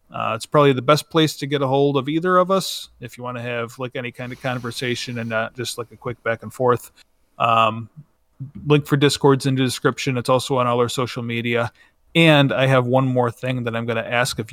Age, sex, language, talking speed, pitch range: 30-49, male, English, 245 wpm, 120-140 Hz